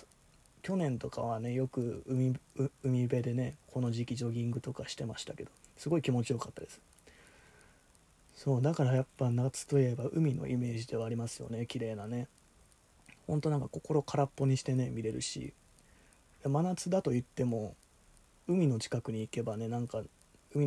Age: 20-39